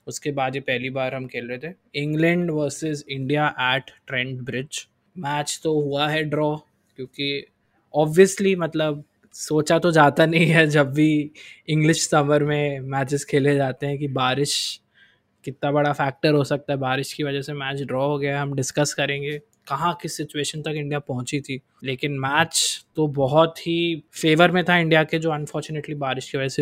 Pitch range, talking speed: 140-165 Hz, 180 wpm